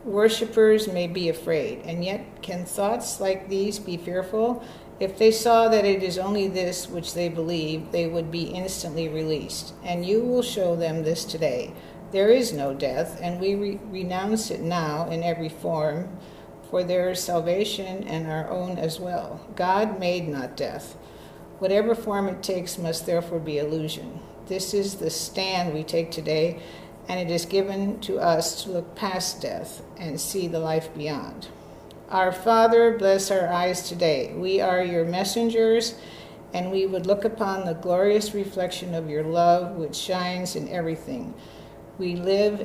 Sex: female